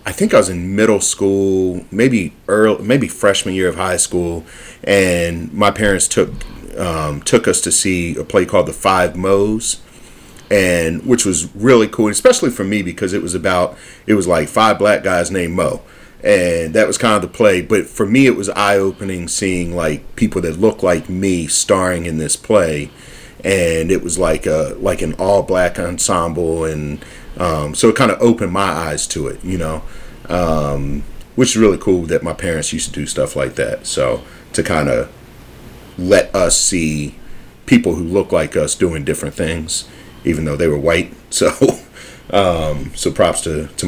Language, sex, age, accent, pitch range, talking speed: English, male, 40-59, American, 80-100 Hz, 185 wpm